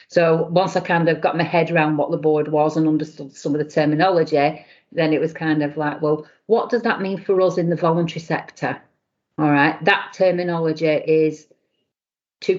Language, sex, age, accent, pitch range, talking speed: English, female, 40-59, British, 150-165 Hz, 200 wpm